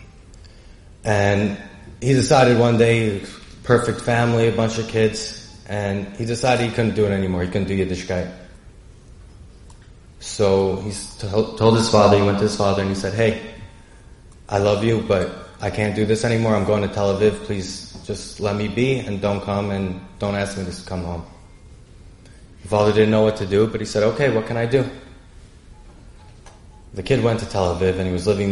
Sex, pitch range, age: male, 95-115 Hz, 20-39